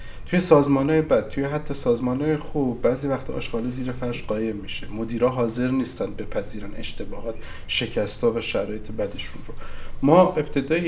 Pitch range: 120-140 Hz